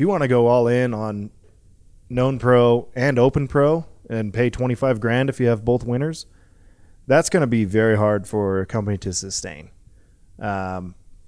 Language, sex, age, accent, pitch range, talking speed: English, male, 20-39, American, 95-120 Hz, 175 wpm